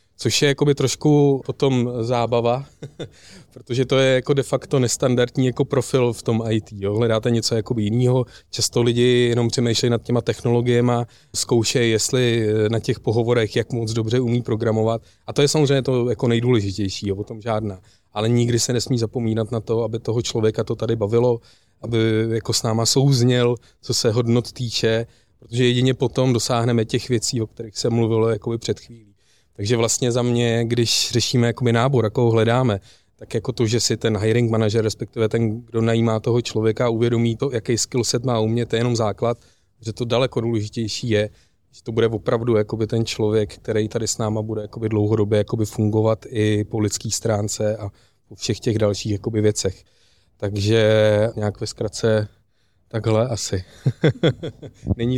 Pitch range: 110-120 Hz